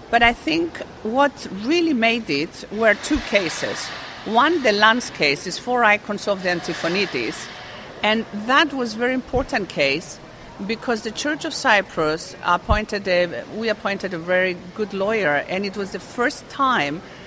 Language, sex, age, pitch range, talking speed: English, female, 50-69, 180-240 Hz, 160 wpm